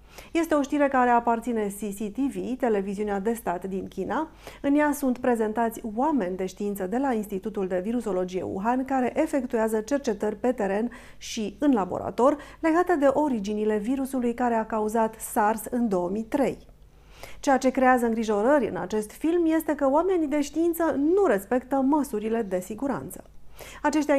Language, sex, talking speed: Romanian, female, 150 wpm